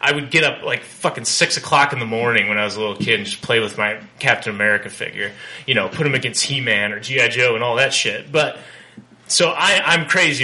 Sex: male